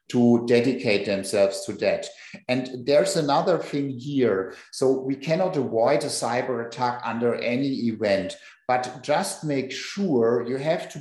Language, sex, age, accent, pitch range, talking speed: German, male, 50-69, German, 120-145 Hz, 145 wpm